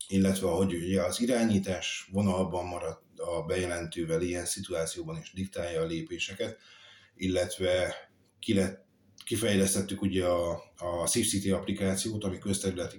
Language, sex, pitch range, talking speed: Hungarian, male, 85-100 Hz, 110 wpm